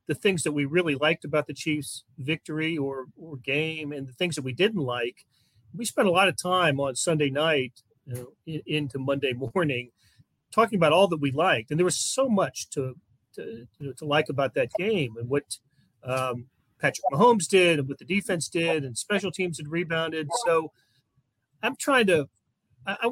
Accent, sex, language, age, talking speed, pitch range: American, male, English, 40-59, 195 wpm, 135-180 Hz